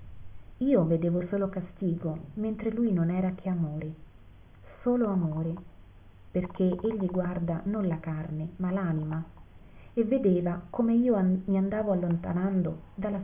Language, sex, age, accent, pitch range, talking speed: Italian, female, 30-49, native, 155-200 Hz, 125 wpm